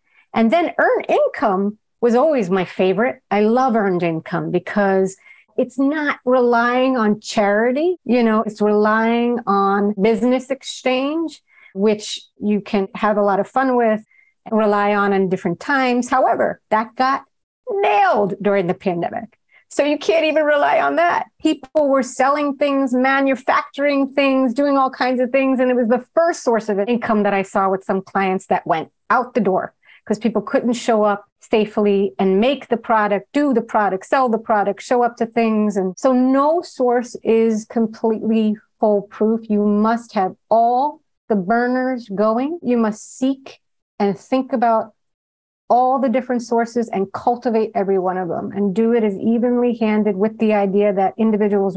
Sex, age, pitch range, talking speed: female, 40-59, 200-255 Hz, 170 wpm